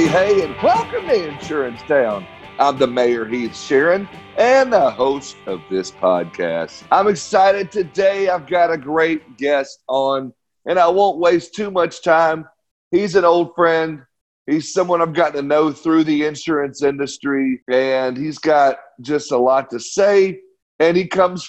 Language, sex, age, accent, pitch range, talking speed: English, male, 40-59, American, 135-180 Hz, 160 wpm